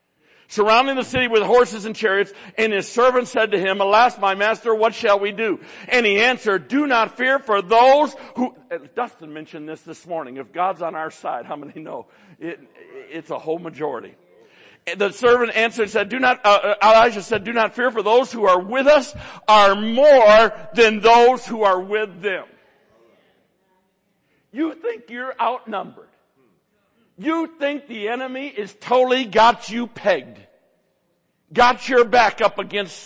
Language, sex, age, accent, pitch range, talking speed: English, male, 60-79, American, 185-245 Hz, 165 wpm